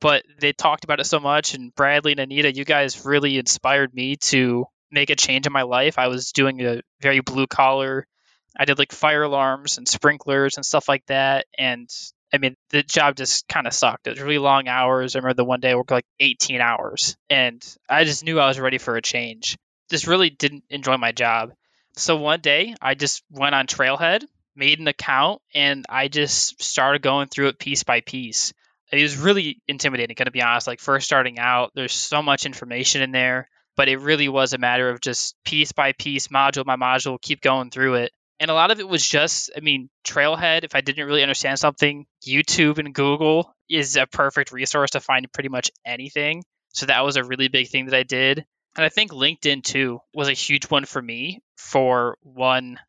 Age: 10-29